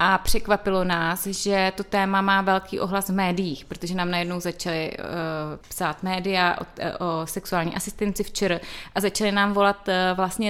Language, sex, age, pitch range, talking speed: Czech, female, 30-49, 175-200 Hz, 150 wpm